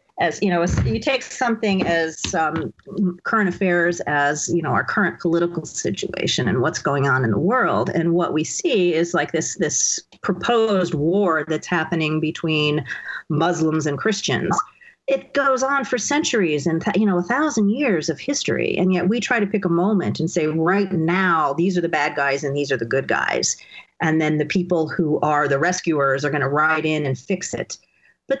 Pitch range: 155-195 Hz